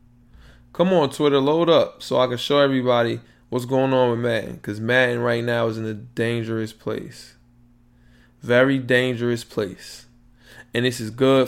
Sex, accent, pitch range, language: male, American, 115-135 Hz, English